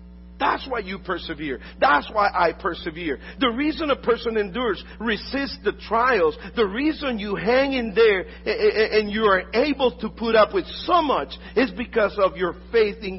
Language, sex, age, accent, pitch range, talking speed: English, male, 50-69, American, 145-230 Hz, 175 wpm